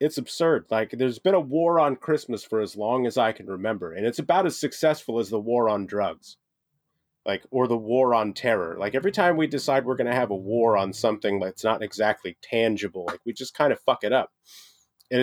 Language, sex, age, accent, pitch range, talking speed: English, male, 30-49, American, 105-145 Hz, 230 wpm